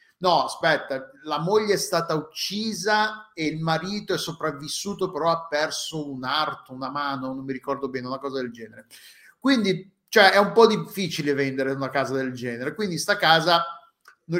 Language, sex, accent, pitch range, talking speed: Italian, male, native, 135-175 Hz, 175 wpm